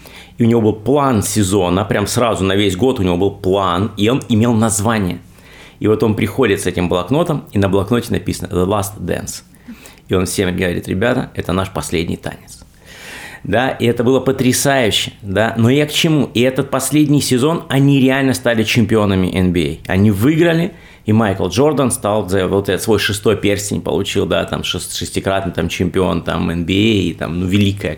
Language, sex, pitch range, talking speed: Russian, male, 95-120 Hz, 175 wpm